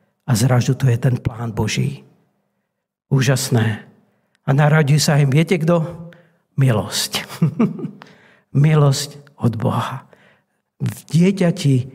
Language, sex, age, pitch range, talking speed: Czech, male, 60-79, 135-200 Hz, 100 wpm